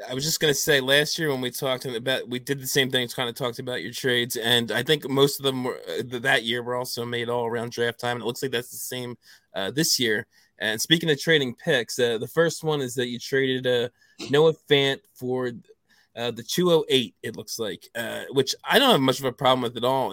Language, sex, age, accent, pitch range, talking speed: English, male, 20-39, American, 120-145 Hz, 260 wpm